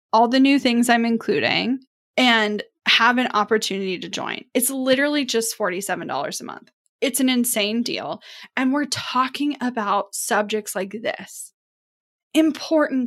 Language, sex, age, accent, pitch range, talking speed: English, female, 10-29, American, 210-260 Hz, 140 wpm